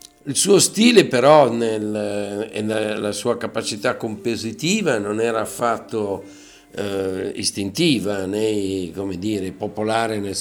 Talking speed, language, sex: 115 wpm, Italian, male